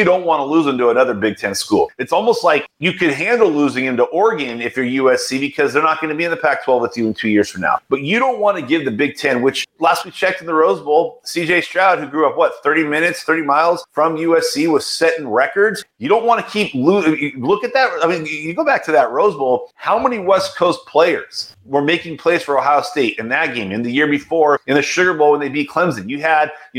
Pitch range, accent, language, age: 135-175 Hz, American, English, 30-49